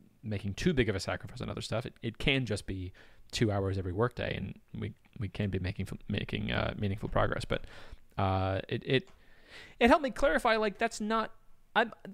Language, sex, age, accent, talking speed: English, male, 20-39, American, 205 wpm